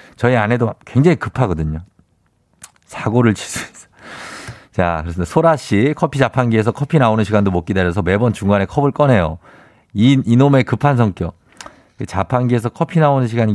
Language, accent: Korean, native